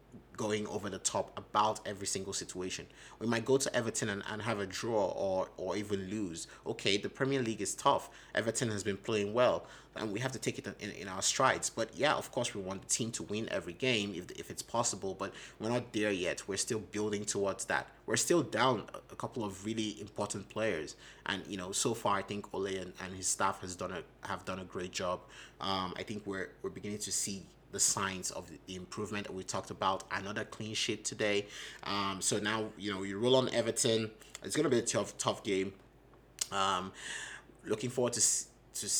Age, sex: 30-49, male